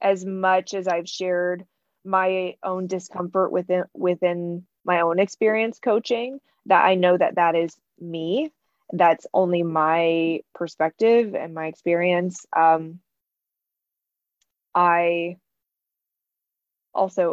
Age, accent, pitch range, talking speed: 20-39, American, 165-190 Hz, 105 wpm